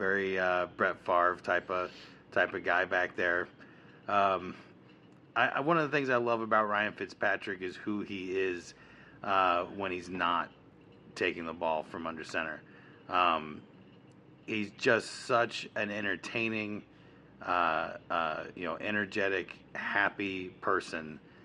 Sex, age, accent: male, 30-49, American